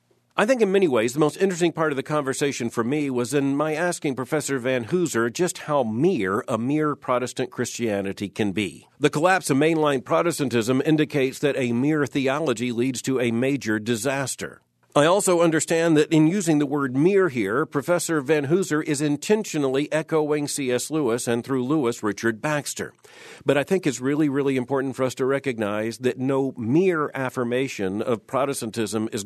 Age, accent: 50-69, American